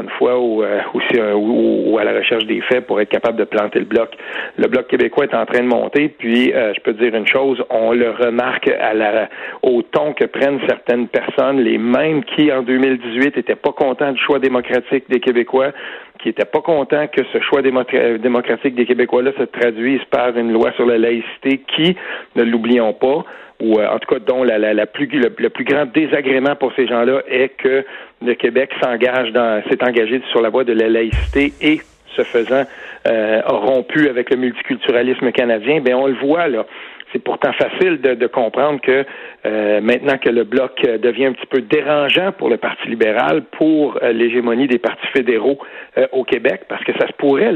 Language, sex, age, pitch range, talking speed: French, male, 40-59, 120-140 Hz, 195 wpm